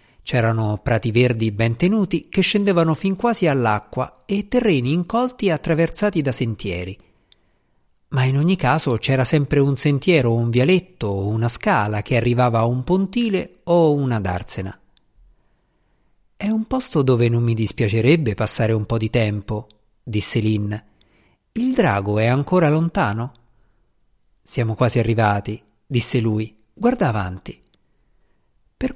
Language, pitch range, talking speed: Italian, 110-180 Hz, 135 wpm